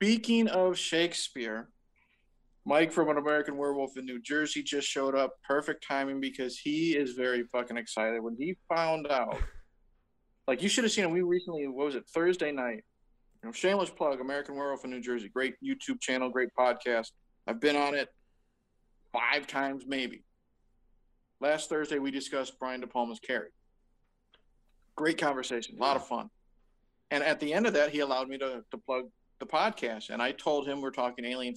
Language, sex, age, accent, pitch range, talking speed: English, male, 50-69, American, 130-175 Hz, 180 wpm